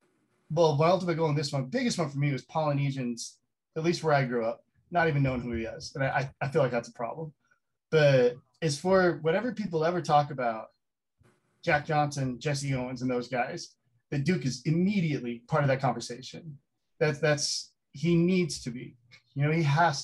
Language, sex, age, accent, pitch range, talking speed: English, male, 20-39, American, 125-160 Hz, 200 wpm